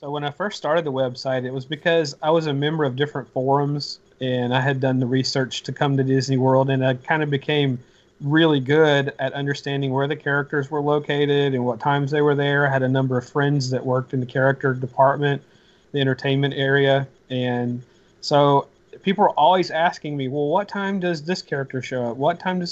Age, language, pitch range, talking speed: 30-49, English, 130-155 Hz, 215 wpm